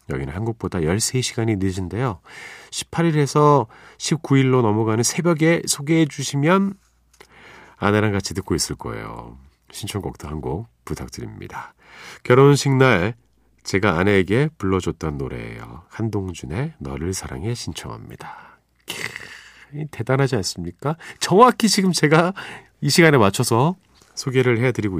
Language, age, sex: Korean, 40-59, male